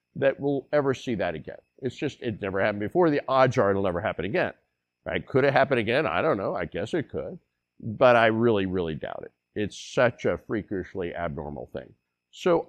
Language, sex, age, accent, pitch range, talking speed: English, male, 50-69, American, 95-120 Hz, 210 wpm